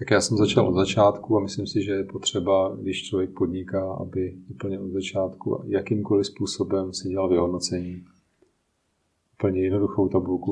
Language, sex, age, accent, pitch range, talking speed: Czech, male, 30-49, native, 95-105 Hz, 155 wpm